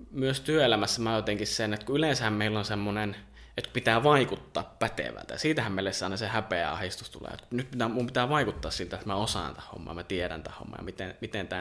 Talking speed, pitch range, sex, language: 205 wpm, 95-130 Hz, male, Finnish